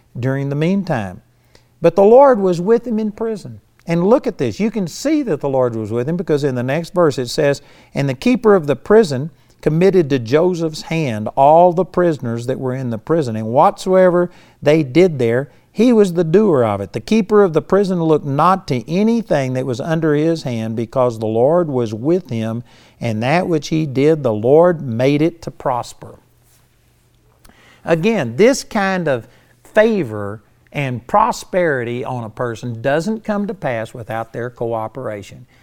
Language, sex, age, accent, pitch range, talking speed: English, male, 50-69, American, 120-180 Hz, 180 wpm